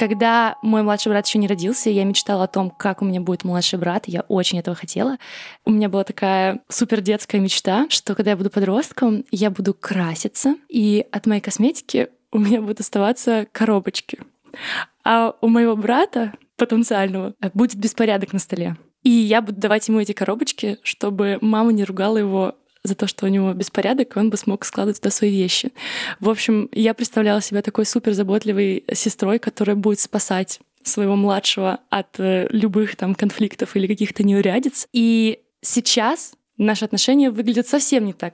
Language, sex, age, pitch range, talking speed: Russian, female, 20-39, 195-230 Hz, 165 wpm